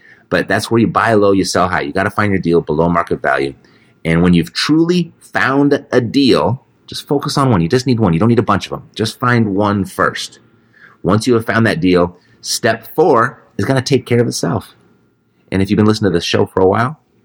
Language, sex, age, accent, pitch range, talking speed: English, male, 30-49, American, 90-115 Hz, 245 wpm